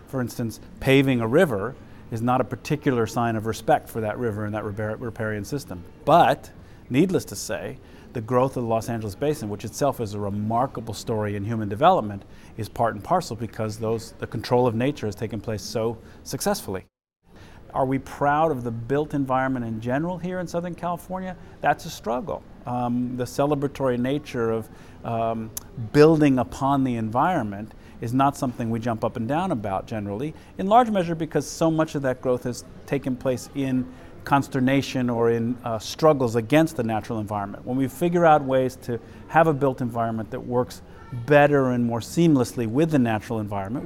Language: English